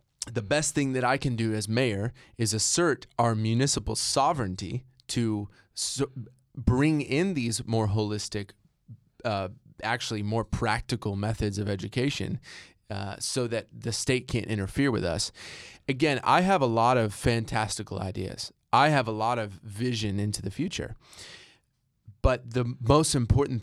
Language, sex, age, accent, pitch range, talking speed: English, male, 20-39, American, 105-125 Hz, 145 wpm